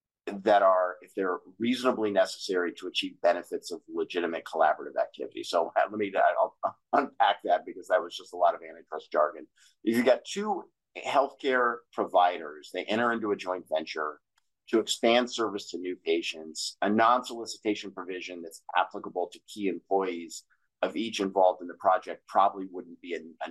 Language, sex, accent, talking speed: English, male, American, 165 wpm